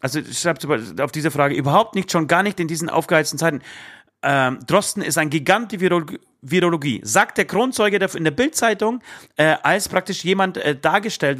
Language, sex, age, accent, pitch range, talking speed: German, male, 40-59, German, 140-195 Hz, 185 wpm